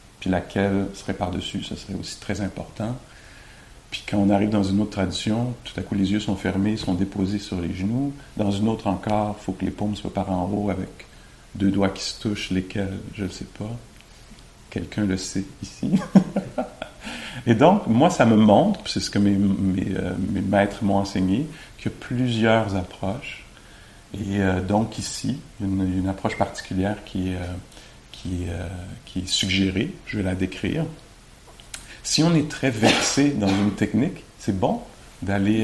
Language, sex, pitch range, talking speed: English, male, 95-105 Hz, 175 wpm